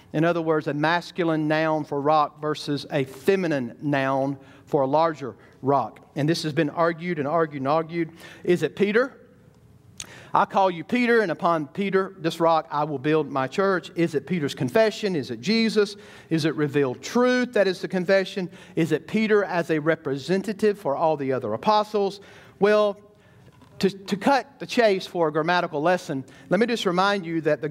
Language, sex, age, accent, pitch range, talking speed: English, male, 40-59, American, 155-200 Hz, 185 wpm